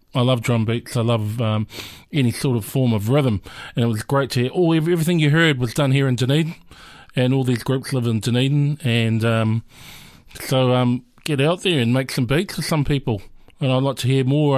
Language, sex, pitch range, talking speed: English, male, 120-140 Hz, 230 wpm